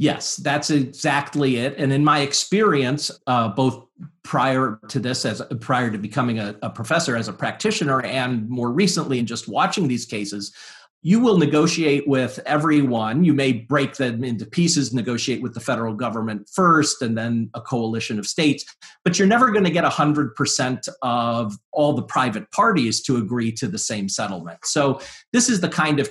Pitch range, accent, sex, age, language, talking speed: 120-155 Hz, American, male, 40-59, English, 180 wpm